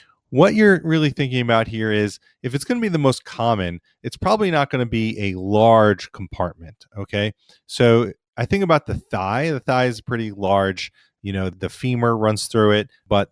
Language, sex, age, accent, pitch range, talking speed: English, male, 30-49, American, 95-125 Hz, 200 wpm